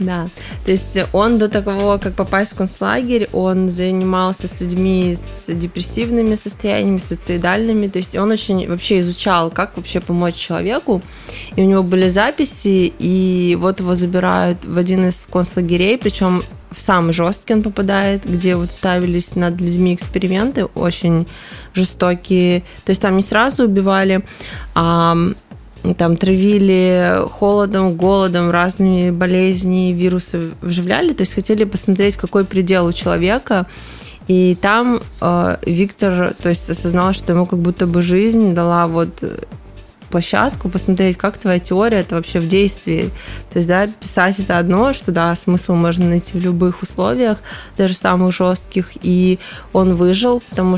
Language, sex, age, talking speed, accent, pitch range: Russian, female, 20-39, 145 wpm, native, 175-195 Hz